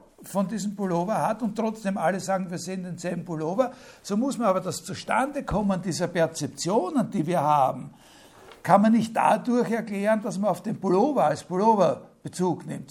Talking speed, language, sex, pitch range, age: 170 wpm, German, male, 180-225 Hz, 60-79